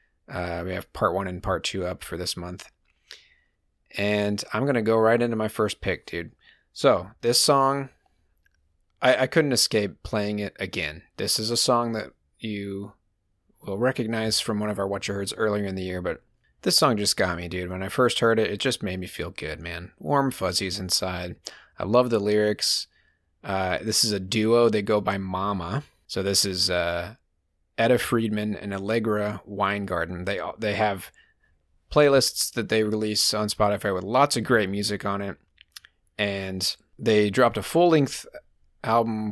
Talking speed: 180 wpm